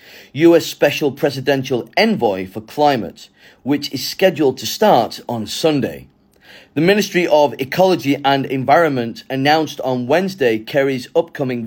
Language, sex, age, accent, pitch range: Chinese, male, 30-49, British, 130-165 Hz